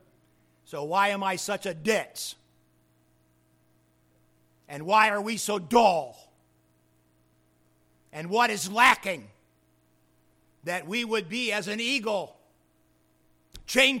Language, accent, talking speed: English, American, 105 wpm